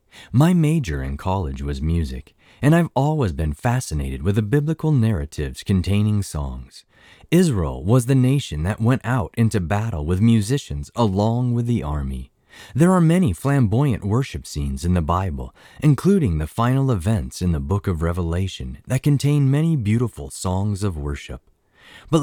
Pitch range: 85-135 Hz